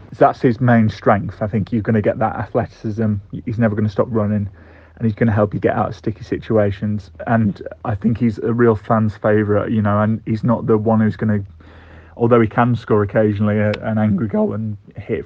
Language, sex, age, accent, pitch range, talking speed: English, male, 30-49, British, 105-115 Hz, 225 wpm